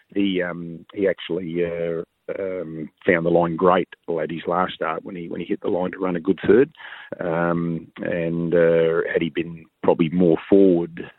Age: 40-59